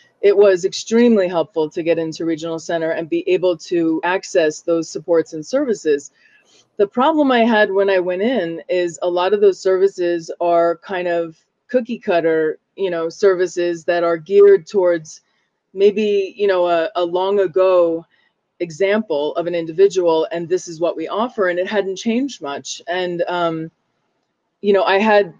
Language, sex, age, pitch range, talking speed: English, female, 20-39, 170-215 Hz, 170 wpm